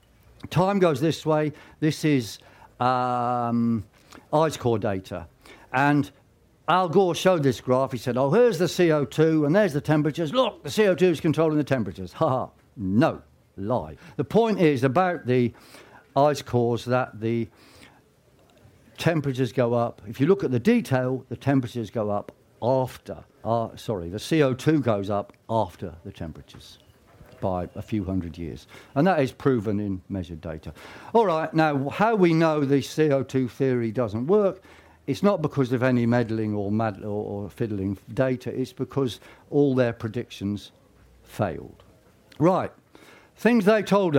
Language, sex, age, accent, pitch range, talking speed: English, male, 60-79, British, 115-155 Hz, 150 wpm